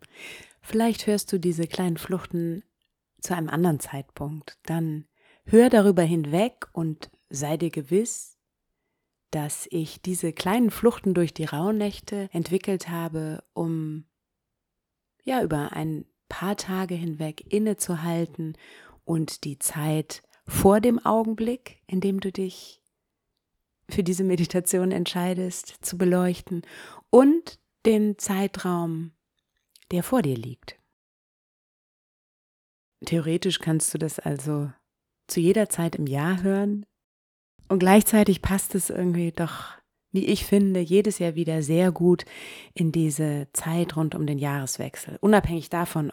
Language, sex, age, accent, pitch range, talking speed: German, female, 30-49, German, 155-190 Hz, 120 wpm